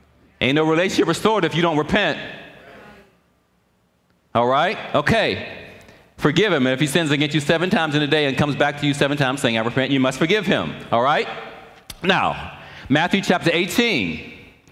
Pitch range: 135-180 Hz